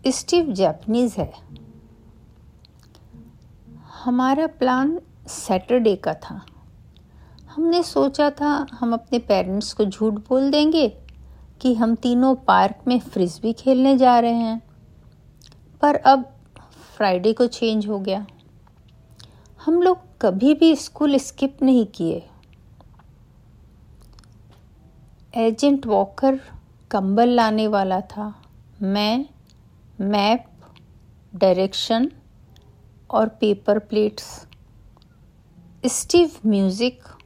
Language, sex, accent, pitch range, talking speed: Hindi, female, native, 190-255 Hz, 90 wpm